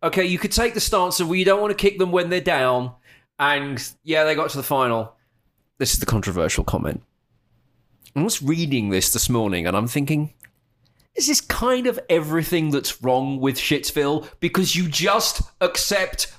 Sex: male